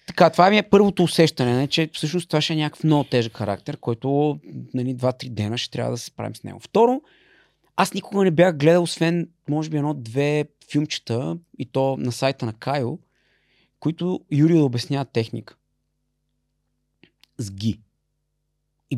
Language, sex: Bulgarian, male